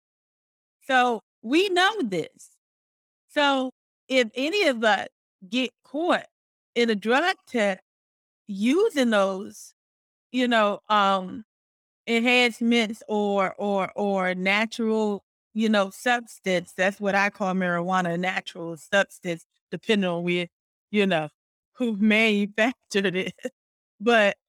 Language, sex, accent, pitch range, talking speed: English, female, American, 200-255 Hz, 110 wpm